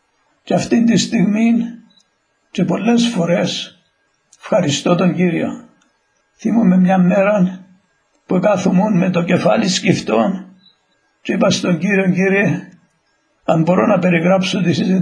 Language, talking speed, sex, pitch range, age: Greek, 115 wpm, male, 175-195 Hz, 60-79